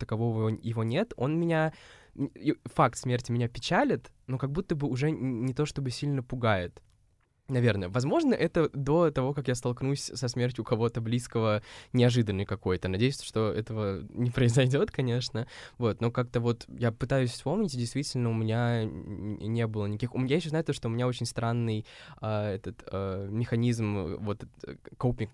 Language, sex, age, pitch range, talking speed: Russian, male, 20-39, 105-125 Hz, 160 wpm